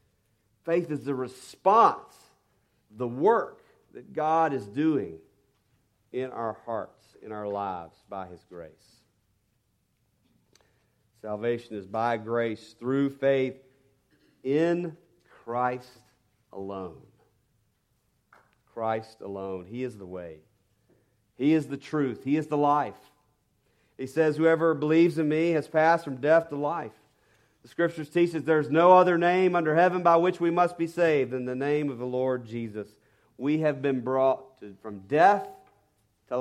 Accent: American